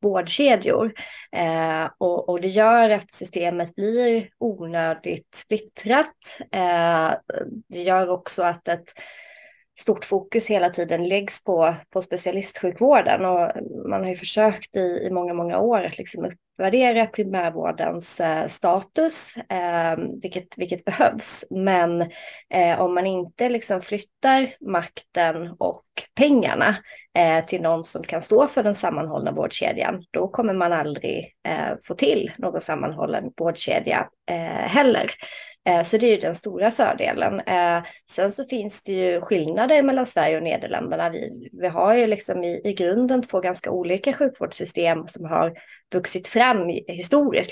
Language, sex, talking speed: Swedish, female, 140 wpm